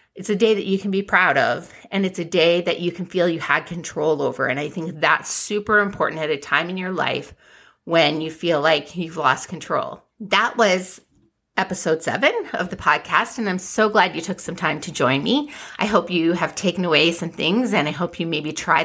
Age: 30-49